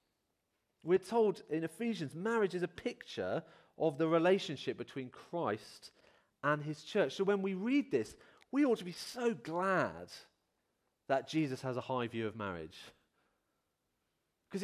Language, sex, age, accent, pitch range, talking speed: English, male, 40-59, British, 130-210 Hz, 150 wpm